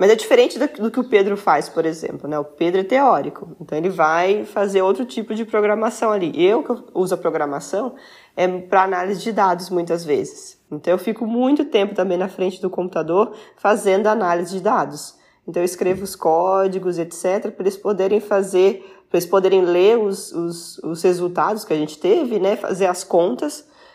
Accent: Brazilian